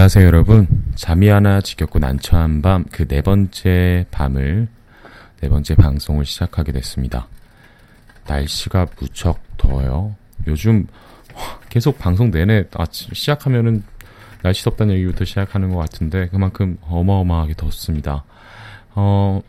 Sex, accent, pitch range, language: male, native, 75-110 Hz, Korean